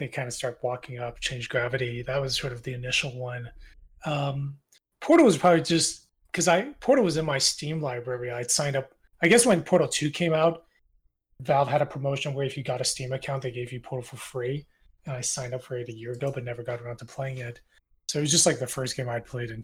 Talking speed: 255 wpm